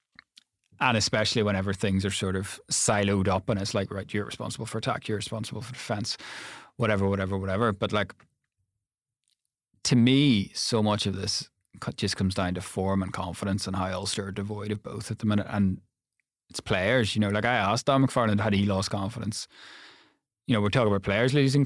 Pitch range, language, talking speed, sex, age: 100-125 Hz, English, 195 wpm, male, 30-49